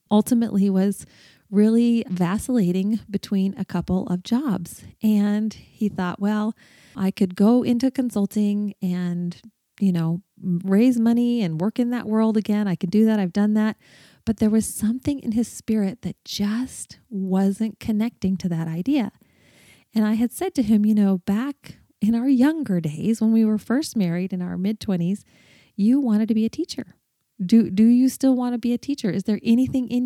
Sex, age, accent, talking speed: female, 30-49, American, 180 wpm